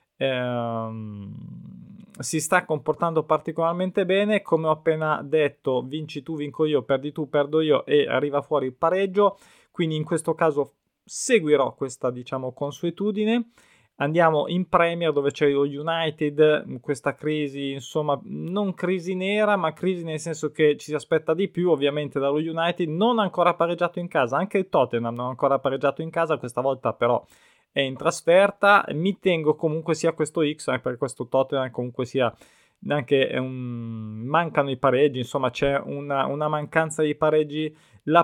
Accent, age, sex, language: native, 20-39, male, Italian